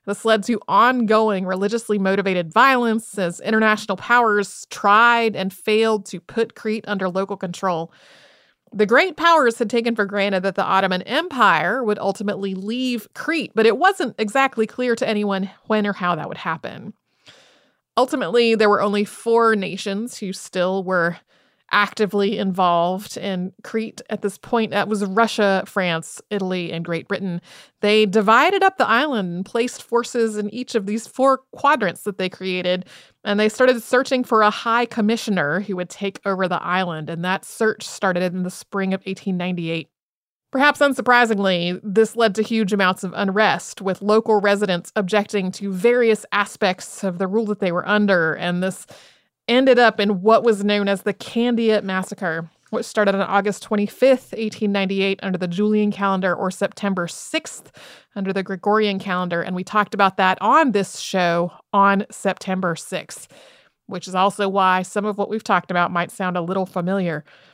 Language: English